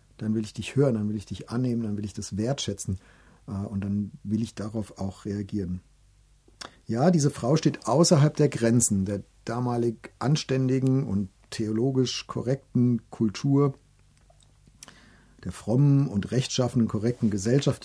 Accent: German